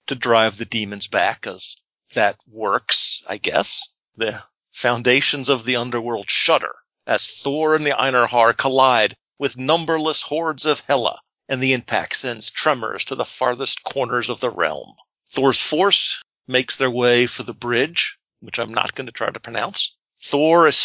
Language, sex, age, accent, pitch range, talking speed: English, male, 50-69, American, 120-155 Hz, 165 wpm